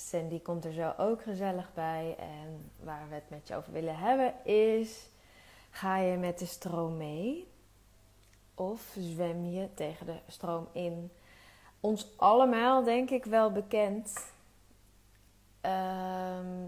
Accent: Dutch